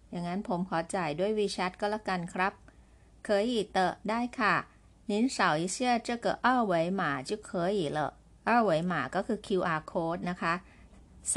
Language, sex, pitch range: Chinese, female, 165-210 Hz